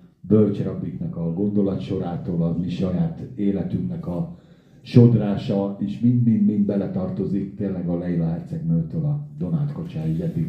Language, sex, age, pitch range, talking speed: Hungarian, male, 50-69, 100-145 Hz, 125 wpm